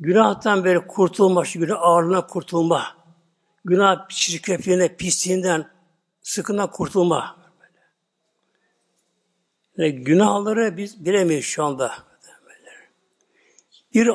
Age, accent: 60-79, native